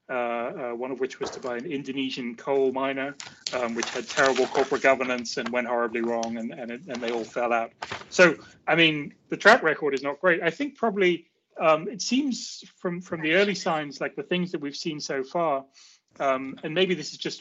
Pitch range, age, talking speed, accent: 135-165 Hz, 30-49, 220 wpm, British